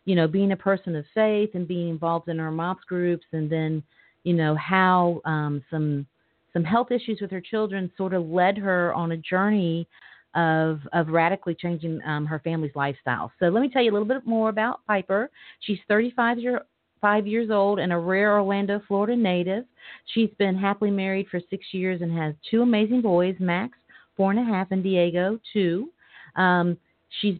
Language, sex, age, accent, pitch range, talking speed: English, female, 40-59, American, 160-200 Hz, 190 wpm